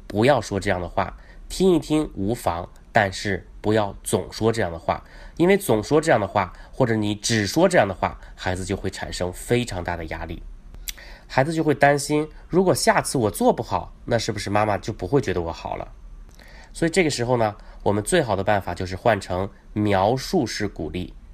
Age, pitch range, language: 30-49, 95-145 Hz, Chinese